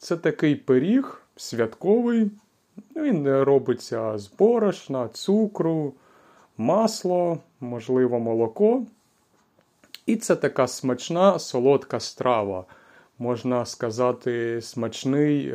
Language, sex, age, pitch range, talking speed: Ukrainian, male, 30-49, 115-160 Hz, 80 wpm